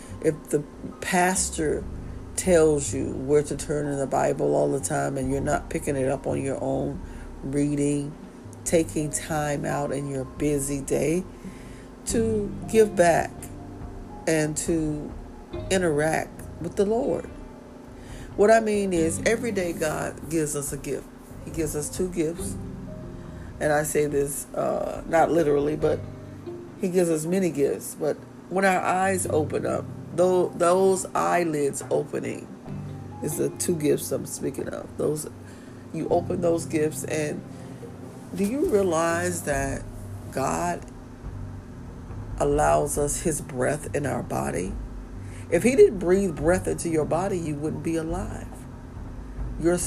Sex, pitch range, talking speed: female, 125-170 Hz, 140 wpm